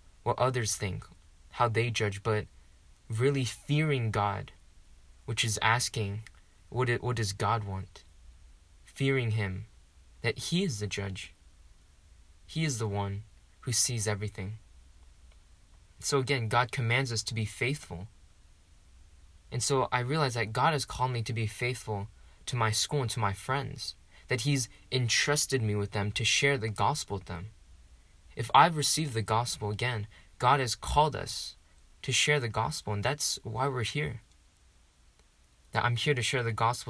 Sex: male